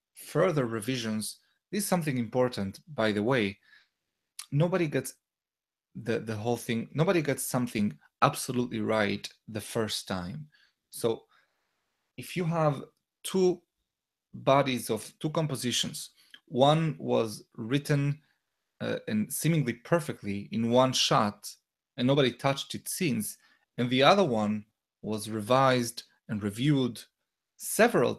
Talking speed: 120 wpm